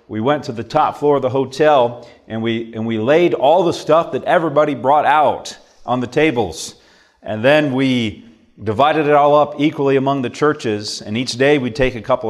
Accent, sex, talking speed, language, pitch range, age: American, male, 205 wpm, English, 110-150 Hz, 40-59